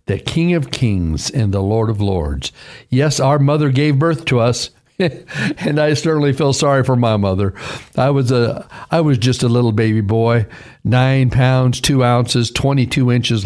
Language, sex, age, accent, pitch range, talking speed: English, male, 60-79, American, 115-165 Hz, 180 wpm